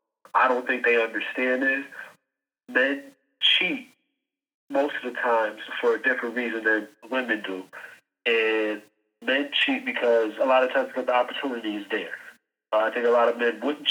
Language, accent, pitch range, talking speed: English, American, 115-135 Hz, 170 wpm